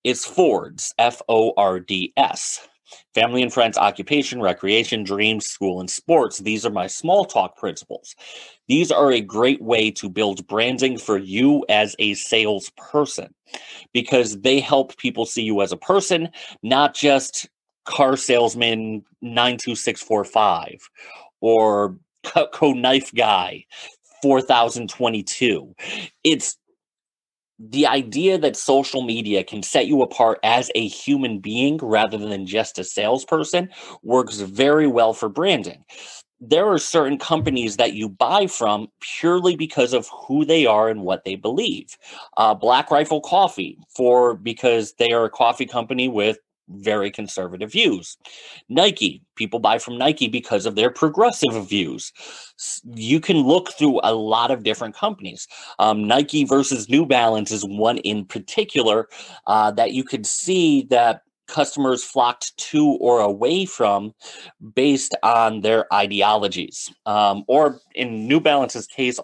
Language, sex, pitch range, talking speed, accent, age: English, male, 105-135 Hz, 135 wpm, American, 30-49